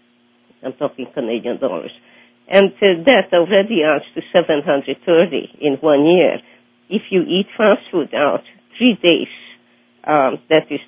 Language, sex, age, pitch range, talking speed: English, female, 50-69, 130-175 Hz, 120 wpm